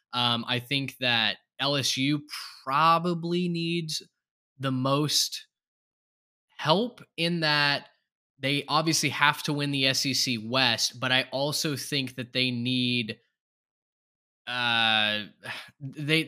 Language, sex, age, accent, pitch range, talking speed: English, male, 10-29, American, 125-155 Hz, 105 wpm